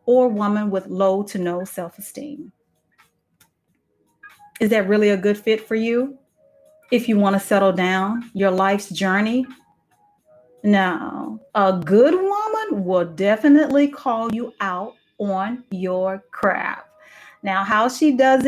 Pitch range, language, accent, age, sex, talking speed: 190-255 Hz, English, American, 40-59, female, 130 wpm